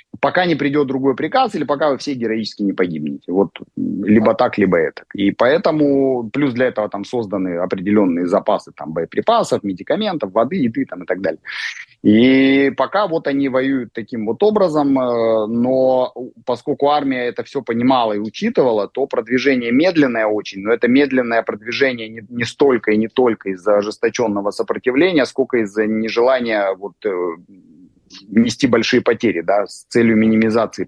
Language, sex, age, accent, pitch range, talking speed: Russian, male, 30-49, native, 105-130 Hz, 150 wpm